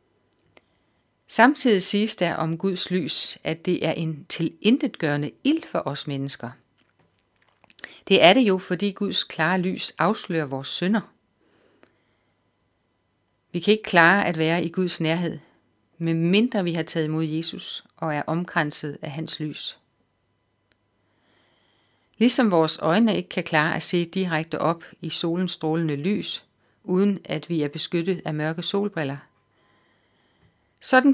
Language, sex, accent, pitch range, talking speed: Danish, female, native, 140-190 Hz, 135 wpm